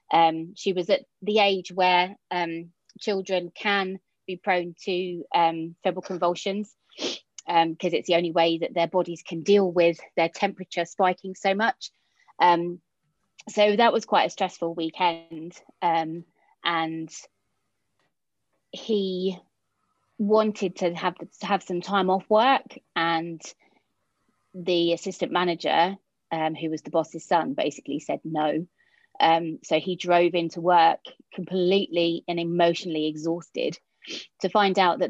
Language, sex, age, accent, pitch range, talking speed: English, female, 20-39, British, 165-200 Hz, 135 wpm